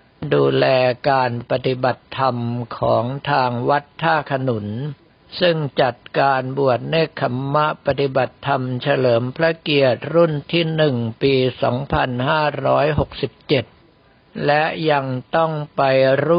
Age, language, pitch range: 60-79, Thai, 125-150 Hz